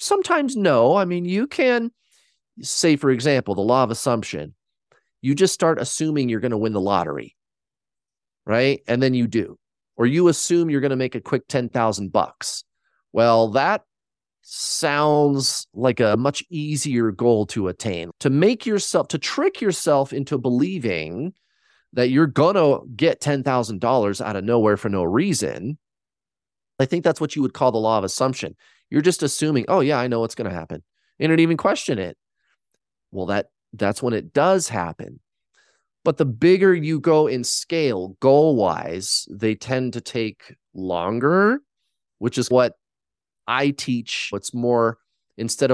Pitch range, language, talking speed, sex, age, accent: 110-150 Hz, English, 165 wpm, male, 30-49, American